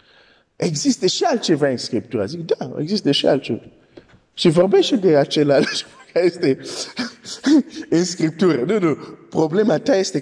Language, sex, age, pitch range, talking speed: Romanian, male, 50-69, 120-195 Hz, 130 wpm